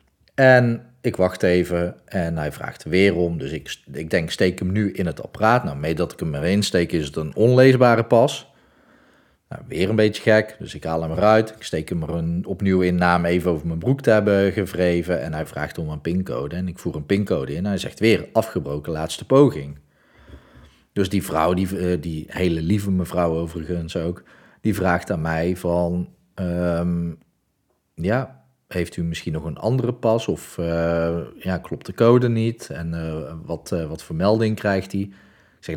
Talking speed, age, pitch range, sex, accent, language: 195 wpm, 40-59, 85-105 Hz, male, Dutch, Dutch